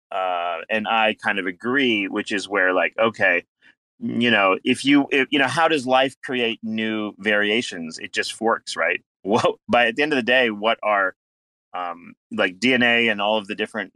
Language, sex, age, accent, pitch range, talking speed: English, male, 30-49, American, 95-120 Hz, 190 wpm